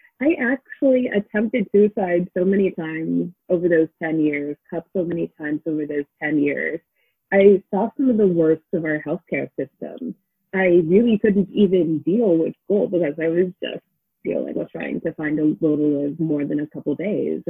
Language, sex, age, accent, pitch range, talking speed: English, female, 30-49, American, 160-215 Hz, 190 wpm